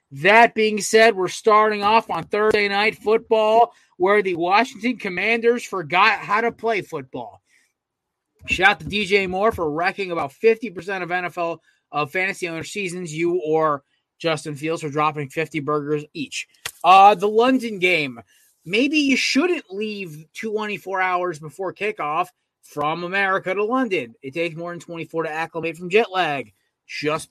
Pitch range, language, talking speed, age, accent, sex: 160-235 Hz, English, 155 wpm, 30-49, American, male